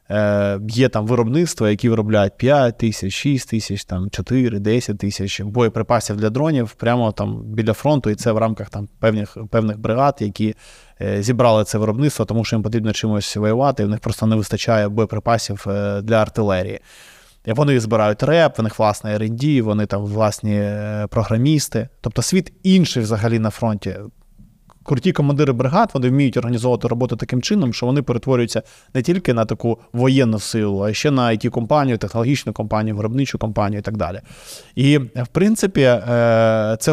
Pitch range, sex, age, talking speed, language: 110-135 Hz, male, 20-39, 155 wpm, Ukrainian